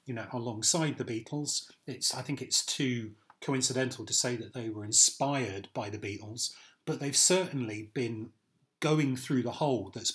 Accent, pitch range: British, 115-150 Hz